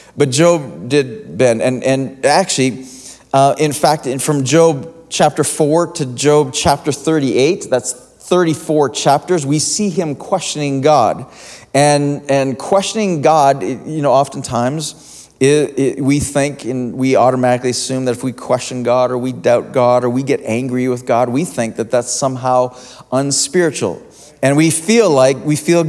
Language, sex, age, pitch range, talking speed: English, male, 40-59, 135-185 Hz, 155 wpm